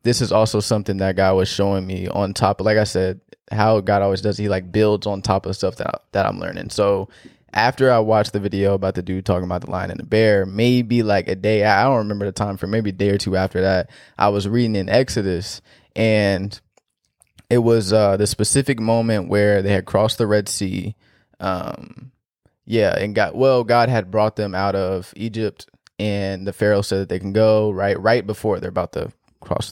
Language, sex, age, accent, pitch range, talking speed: English, male, 20-39, American, 100-110 Hz, 220 wpm